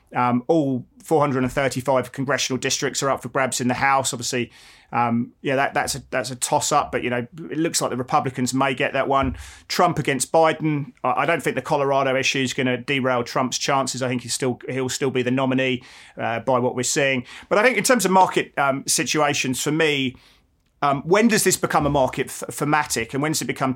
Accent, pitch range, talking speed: British, 130-150 Hz, 225 wpm